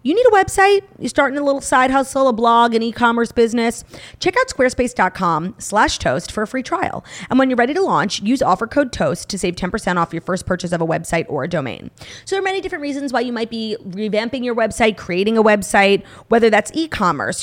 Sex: female